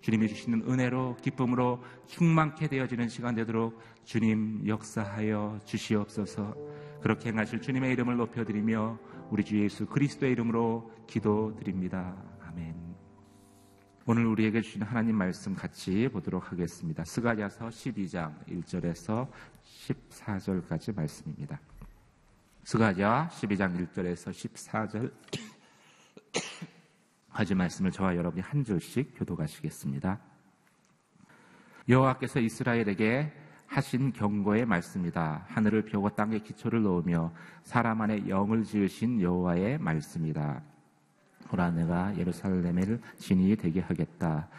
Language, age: Korean, 40-59